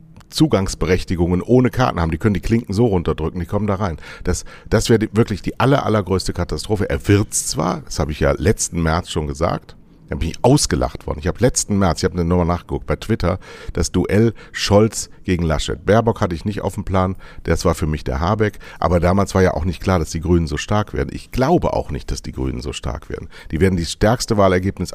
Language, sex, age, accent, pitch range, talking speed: German, male, 60-79, German, 85-105 Hz, 230 wpm